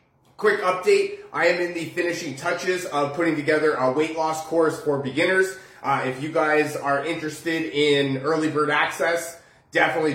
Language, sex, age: English, male, 30-49